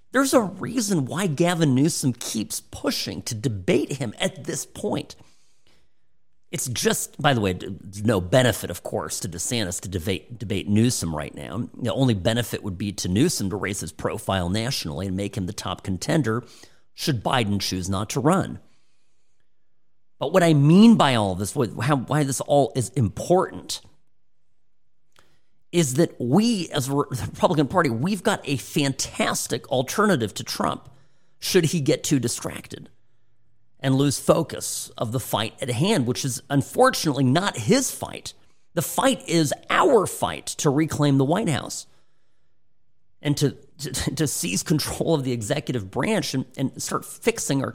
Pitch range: 105-155 Hz